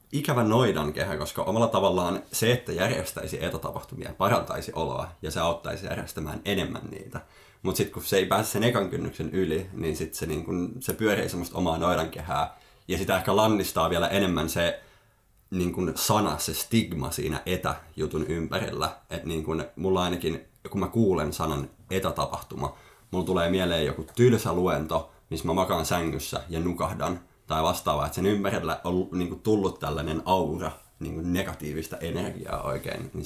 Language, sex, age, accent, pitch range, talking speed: Finnish, male, 30-49, native, 80-95 Hz, 160 wpm